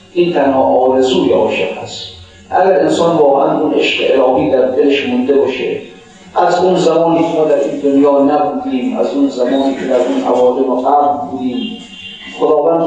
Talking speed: 145 wpm